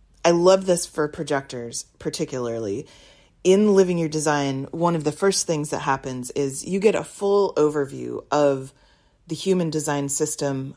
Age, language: 30-49, English